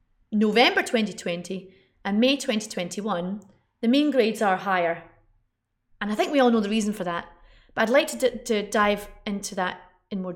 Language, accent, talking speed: English, British, 175 wpm